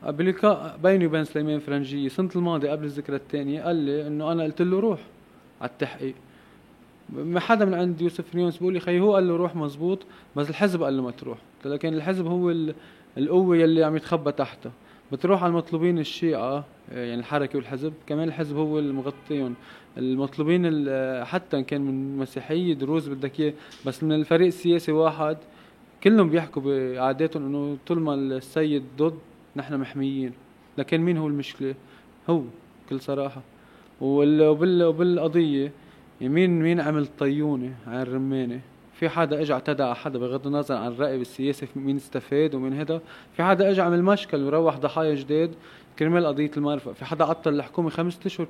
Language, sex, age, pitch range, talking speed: Arabic, male, 20-39, 140-170 Hz, 155 wpm